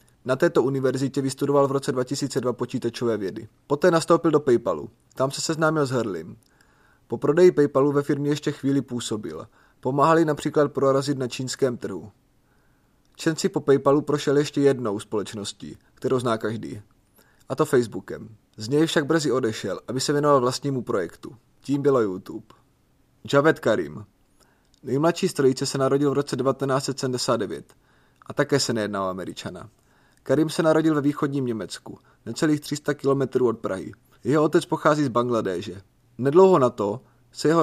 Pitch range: 125-150 Hz